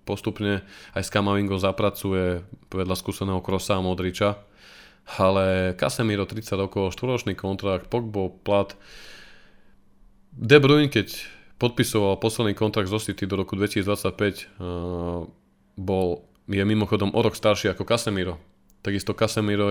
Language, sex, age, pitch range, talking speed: Slovak, male, 20-39, 95-105 Hz, 120 wpm